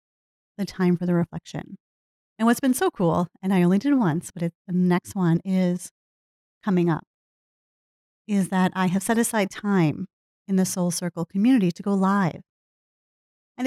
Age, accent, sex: 30-49, American, female